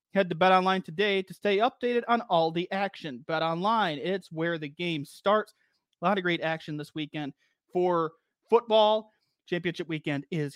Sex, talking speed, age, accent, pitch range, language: male, 170 wpm, 30-49, American, 160-210 Hz, English